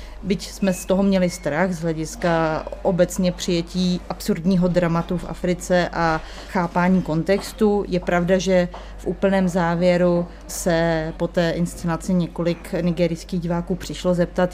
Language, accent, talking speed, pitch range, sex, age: Czech, native, 130 wpm, 170-185 Hz, female, 30-49